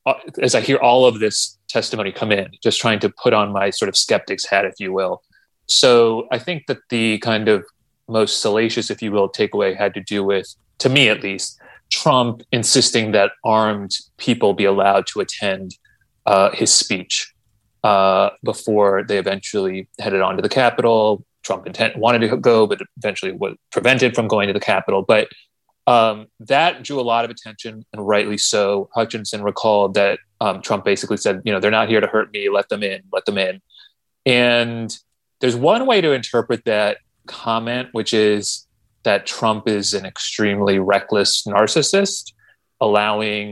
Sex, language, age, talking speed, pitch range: male, English, 30-49, 175 wpm, 100-120 Hz